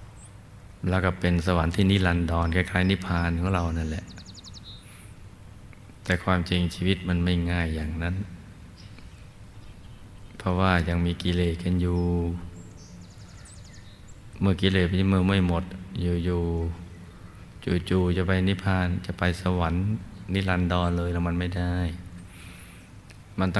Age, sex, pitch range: 20-39, male, 85-100 Hz